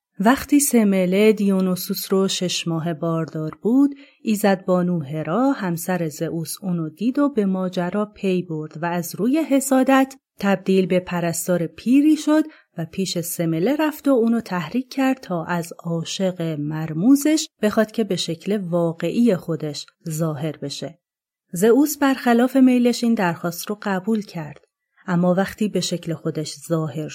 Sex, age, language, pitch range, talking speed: female, 30-49, Persian, 170-240 Hz, 135 wpm